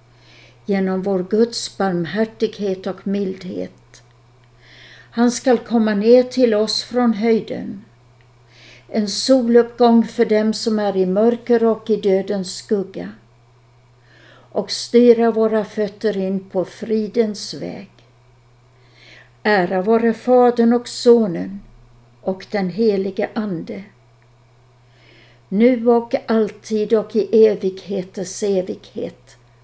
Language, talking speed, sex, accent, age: Swedish, 100 wpm, female, native, 60-79